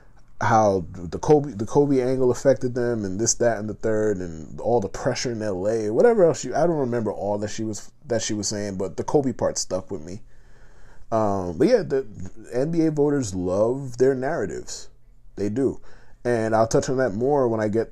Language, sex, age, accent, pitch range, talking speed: English, male, 30-49, American, 100-135 Hz, 205 wpm